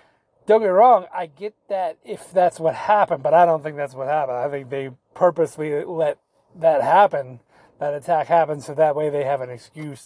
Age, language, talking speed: 30-49, English, 210 wpm